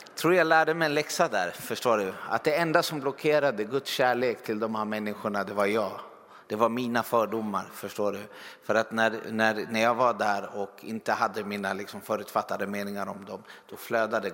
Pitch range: 100-120 Hz